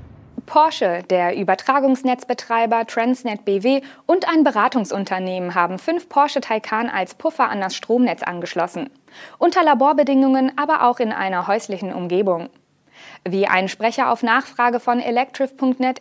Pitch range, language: 190-265 Hz, German